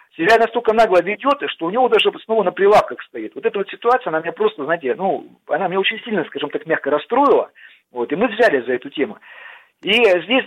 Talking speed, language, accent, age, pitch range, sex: 220 wpm, Russian, native, 40-59, 155-255 Hz, male